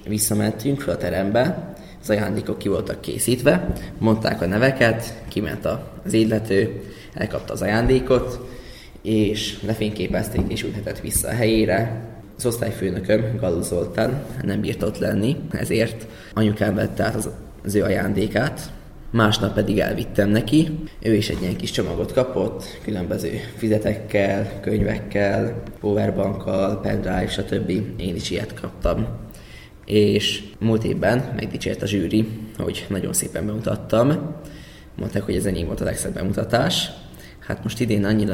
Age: 20-39